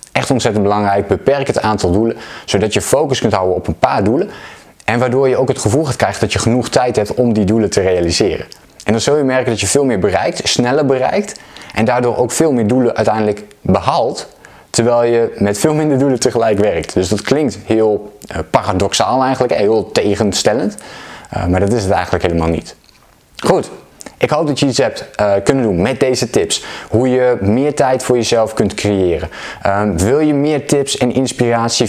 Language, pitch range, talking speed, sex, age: Dutch, 100-130 Hz, 195 wpm, male, 20-39